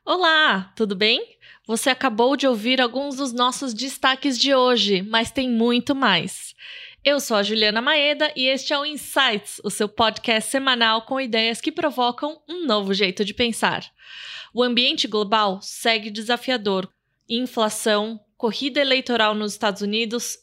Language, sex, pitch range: Portuguese, female, 215-265 Hz